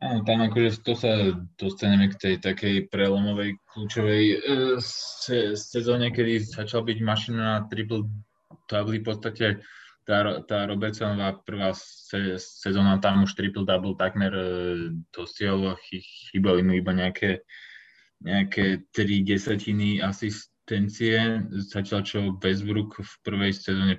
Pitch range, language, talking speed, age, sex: 90-105 Hz, Slovak, 120 wpm, 20-39, male